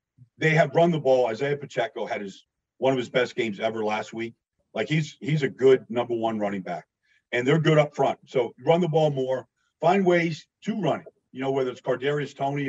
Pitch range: 125-155 Hz